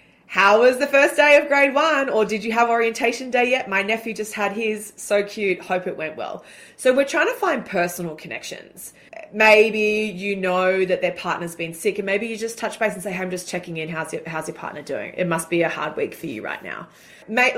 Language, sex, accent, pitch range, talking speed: English, female, Australian, 175-225 Hz, 240 wpm